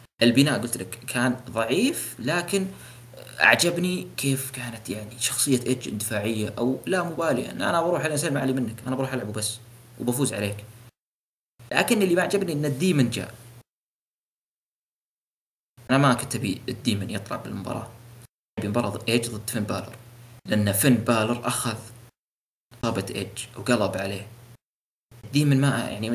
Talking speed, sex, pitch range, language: 135 wpm, male, 115-135 Hz, Arabic